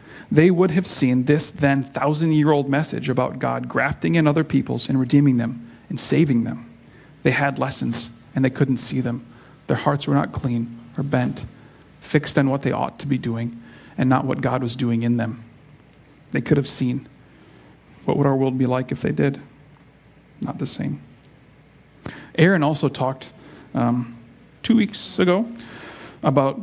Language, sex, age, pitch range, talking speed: English, male, 40-59, 125-150 Hz, 170 wpm